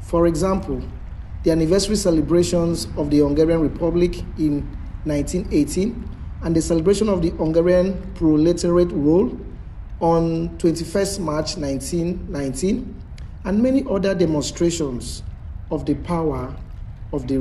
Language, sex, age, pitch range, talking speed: Hungarian, male, 50-69, 140-180 Hz, 110 wpm